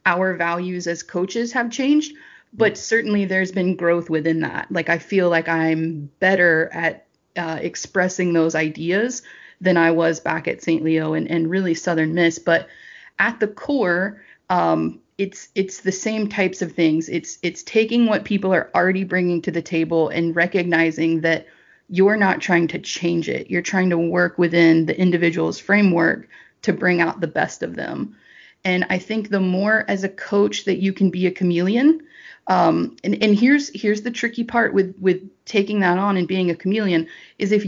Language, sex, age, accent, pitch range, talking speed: English, female, 30-49, American, 170-205 Hz, 185 wpm